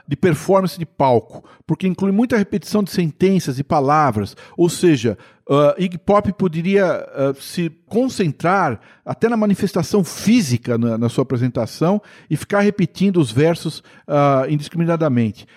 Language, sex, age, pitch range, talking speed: Portuguese, male, 50-69, 140-190 Hz, 125 wpm